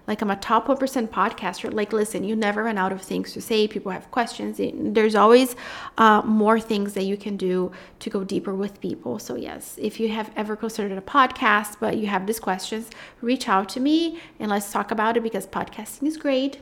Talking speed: 215 wpm